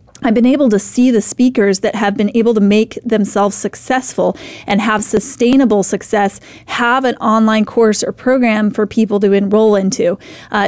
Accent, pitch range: American, 200-235 Hz